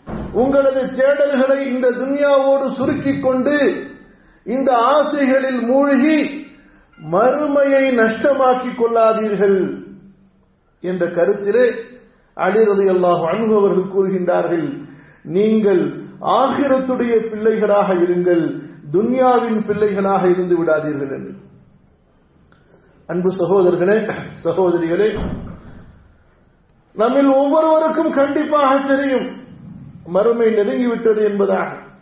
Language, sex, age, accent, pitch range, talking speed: English, male, 50-69, Indian, 200-290 Hz, 65 wpm